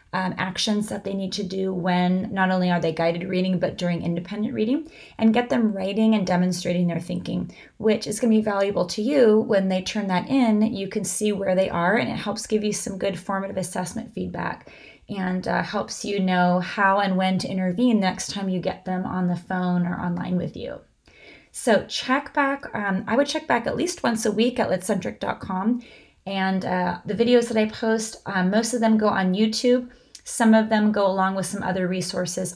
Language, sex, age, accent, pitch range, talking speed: English, female, 30-49, American, 185-215 Hz, 210 wpm